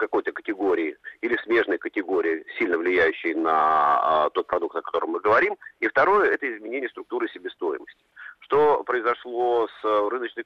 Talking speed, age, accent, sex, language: 140 wpm, 40-59, native, male, Russian